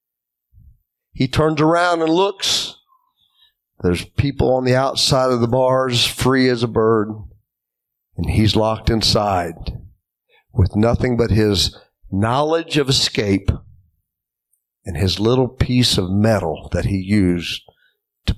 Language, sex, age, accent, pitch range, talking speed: English, male, 50-69, American, 95-130 Hz, 125 wpm